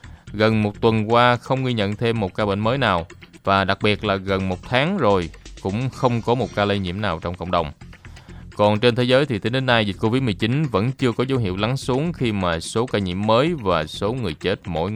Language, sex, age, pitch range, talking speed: Vietnamese, male, 20-39, 90-120 Hz, 240 wpm